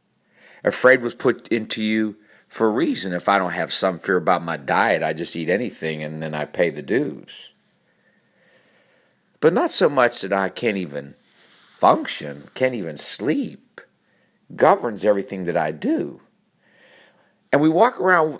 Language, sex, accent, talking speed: English, male, American, 155 wpm